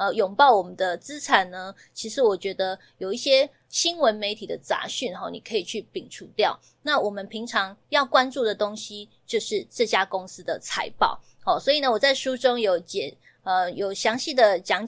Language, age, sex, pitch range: Chinese, 20-39, female, 195-280 Hz